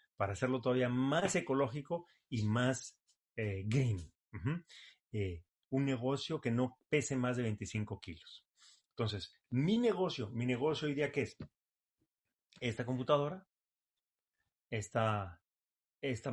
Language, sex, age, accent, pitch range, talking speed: Spanish, male, 30-49, Mexican, 105-130 Hz, 110 wpm